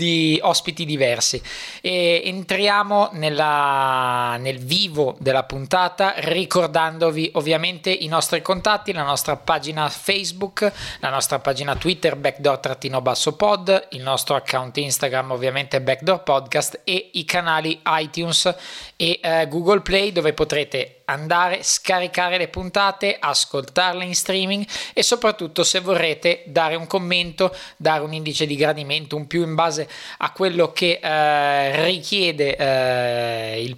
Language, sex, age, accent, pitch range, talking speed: Italian, male, 20-39, native, 145-180 Hz, 130 wpm